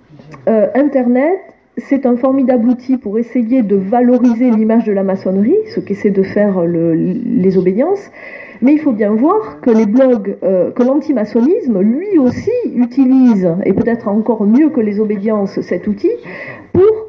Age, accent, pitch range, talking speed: 40-59, French, 190-250 Hz, 150 wpm